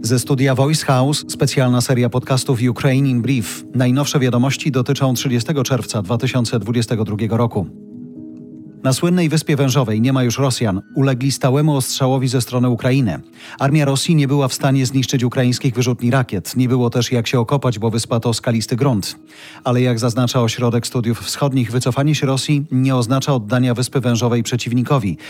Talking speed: 160 wpm